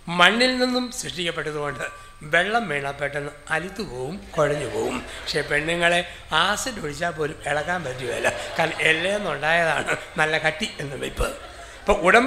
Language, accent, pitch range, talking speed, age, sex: English, Indian, 155-205 Hz, 175 wpm, 60-79, male